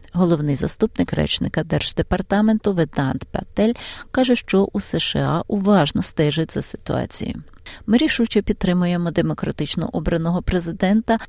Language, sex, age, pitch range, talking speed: Ukrainian, female, 40-59, 155-205 Hz, 105 wpm